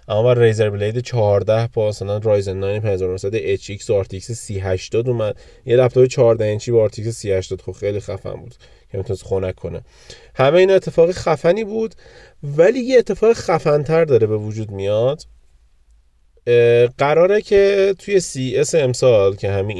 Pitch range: 100-130 Hz